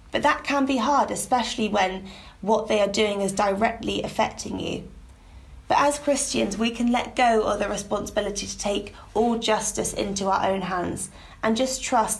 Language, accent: English, British